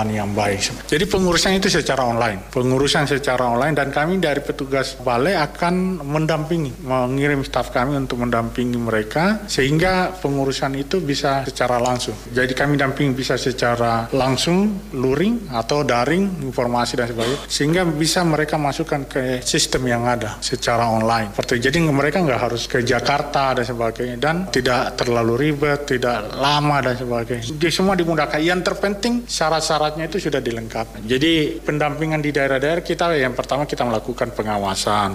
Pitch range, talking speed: 115-145 Hz, 150 wpm